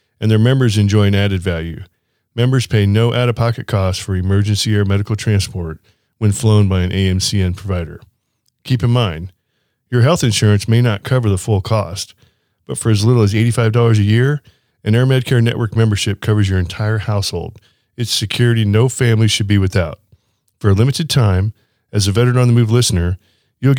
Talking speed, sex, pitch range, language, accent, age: 175 wpm, male, 100-115 Hz, English, American, 40-59